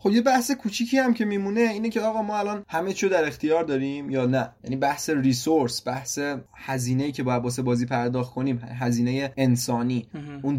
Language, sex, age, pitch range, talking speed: Persian, male, 20-39, 130-175 Hz, 185 wpm